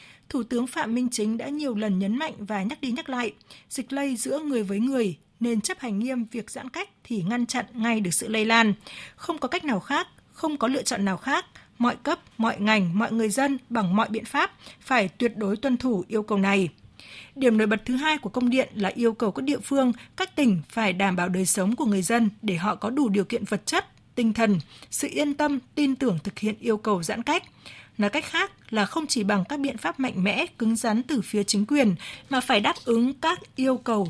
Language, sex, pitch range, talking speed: Vietnamese, female, 210-270 Hz, 240 wpm